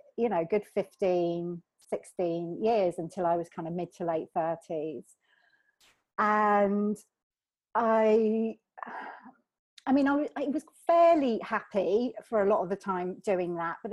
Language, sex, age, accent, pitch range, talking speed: English, female, 40-59, British, 180-225 Hz, 140 wpm